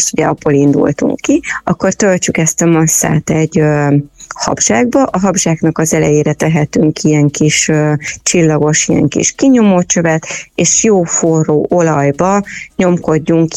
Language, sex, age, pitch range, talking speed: Hungarian, female, 30-49, 155-175 Hz, 135 wpm